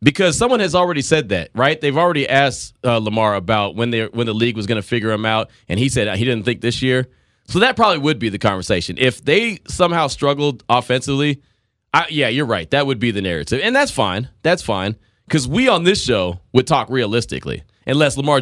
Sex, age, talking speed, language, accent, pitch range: male, 30-49, 220 wpm, English, American, 110-155 Hz